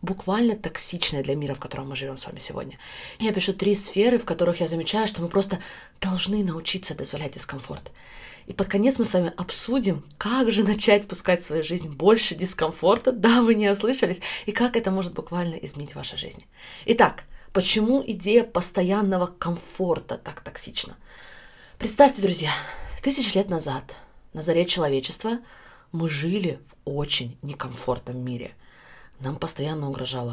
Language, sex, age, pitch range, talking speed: Russian, female, 20-39, 165-220 Hz, 155 wpm